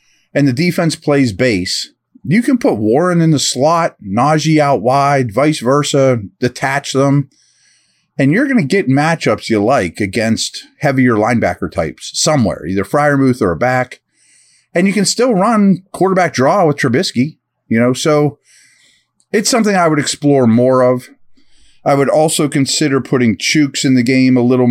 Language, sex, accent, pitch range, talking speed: English, male, American, 115-145 Hz, 160 wpm